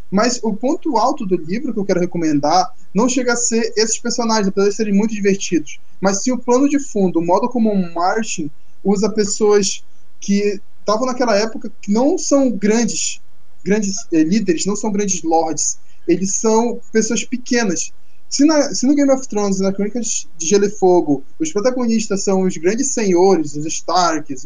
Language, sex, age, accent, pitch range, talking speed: English, male, 10-29, Brazilian, 180-230 Hz, 180 wpm